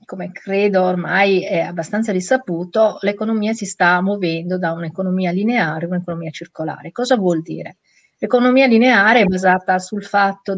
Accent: native